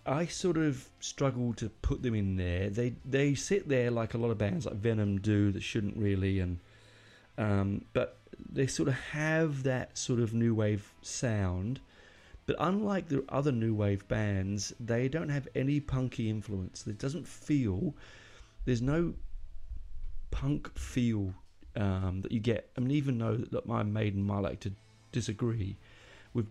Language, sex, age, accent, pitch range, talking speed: English, male, 30-49, British, 100-125 Hz, 165 wpm